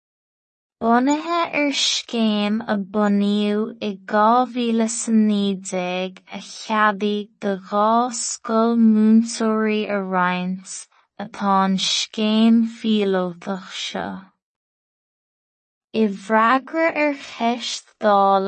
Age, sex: 20-39, female